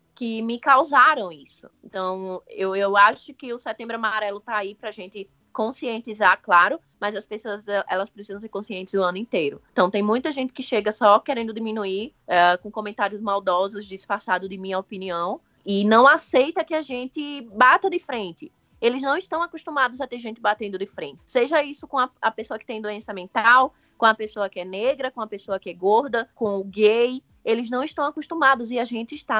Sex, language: female, Portuguese